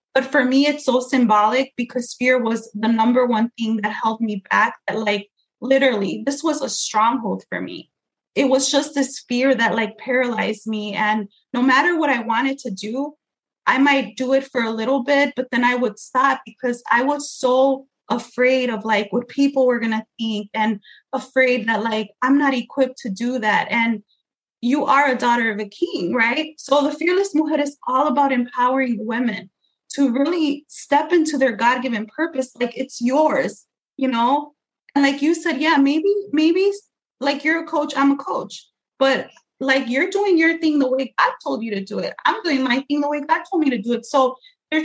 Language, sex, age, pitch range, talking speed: English, female, 20-39, 230-285 Hz, 200 wpm